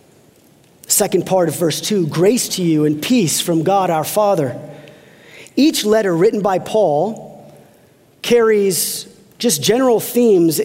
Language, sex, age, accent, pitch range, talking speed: English, male, 40-59, American, 165-220 Hz, 130 wpm